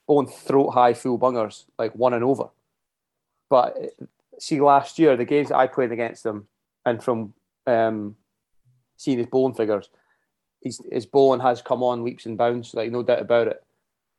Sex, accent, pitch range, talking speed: male, British, 115-130 Hz, 170 wpm